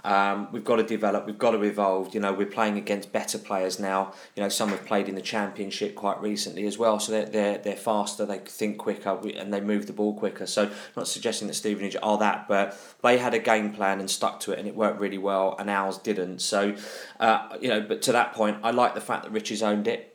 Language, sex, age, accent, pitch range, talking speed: English, male, 20-39, British, 100-110 Hz, 255 wpm